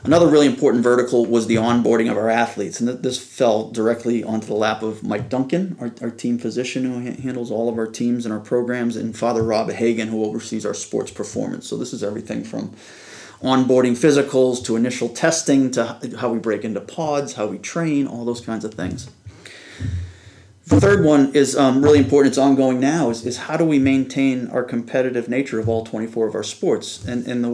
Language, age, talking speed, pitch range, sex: English, 30-49, 205 wpm, 110-130 Hz, male